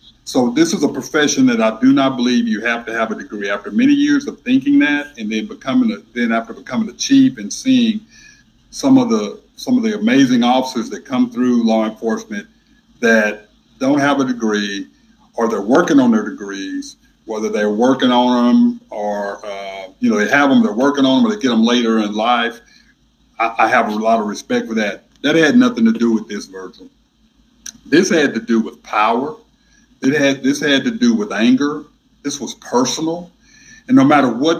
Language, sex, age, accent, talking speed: English, male, 50-69, American, 205 wpm